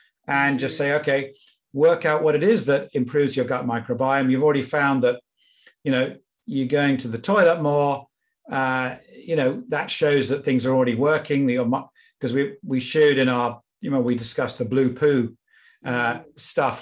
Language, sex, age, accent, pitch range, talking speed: English, male, 50-69, British, 120-145 Hz, 180 wpm